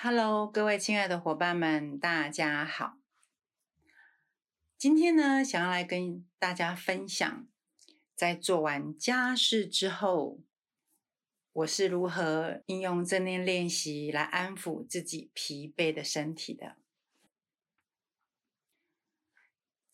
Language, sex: Chinese, female